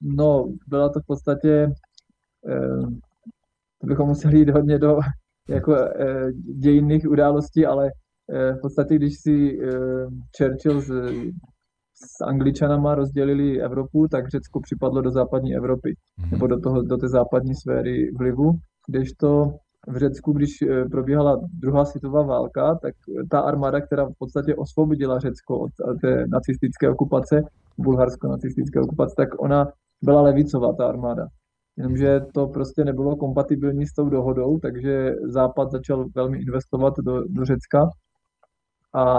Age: 20-39